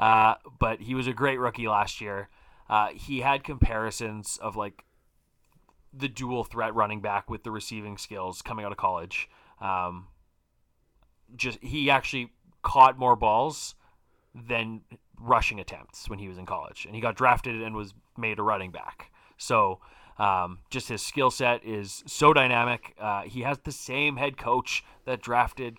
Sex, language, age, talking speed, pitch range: male, English, 30-49, 165 wpm, 105-125 Hz